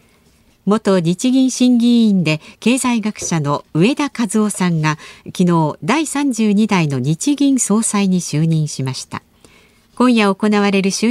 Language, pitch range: Japanese, 165-235 Hz